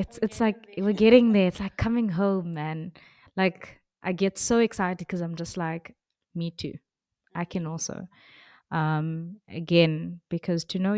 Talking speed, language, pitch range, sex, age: 165 wpm, English, 160-195 Hz, female, 20-39